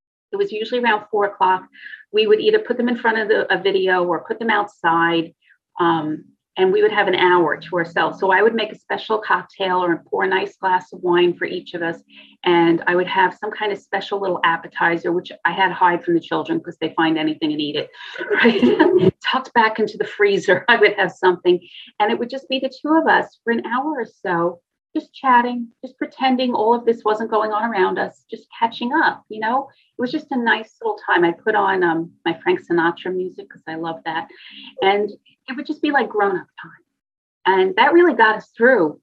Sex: female